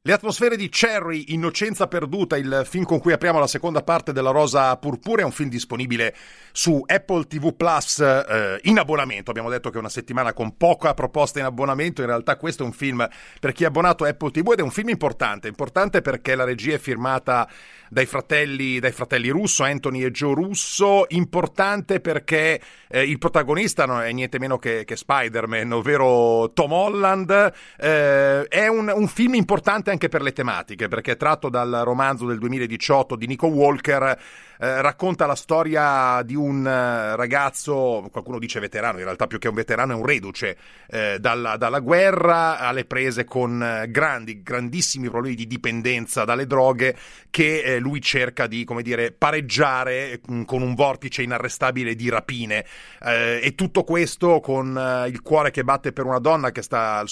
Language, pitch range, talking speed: Italian, 125-160 Hz, 175 wpm